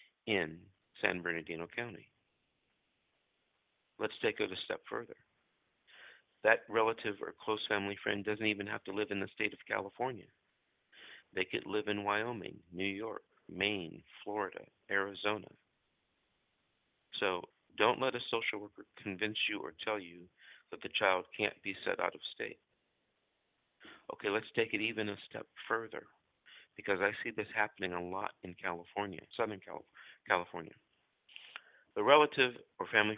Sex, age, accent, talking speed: male, 50-69, American, 145 wpm